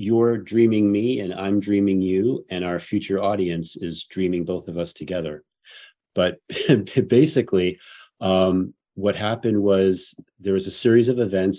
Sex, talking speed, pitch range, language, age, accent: male, 150 wpm, 90-105 Hz, English, 40-59, American